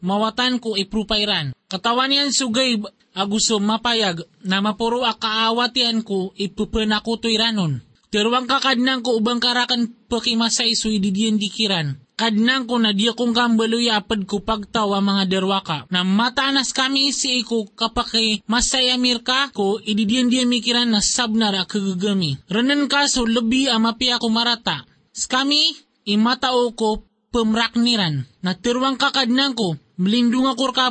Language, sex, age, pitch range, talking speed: Filipino, male, 20-39, 210-245 Hz, 135 wpm